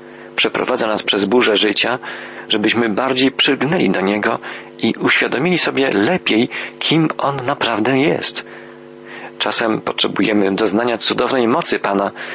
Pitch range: 90-115 Hz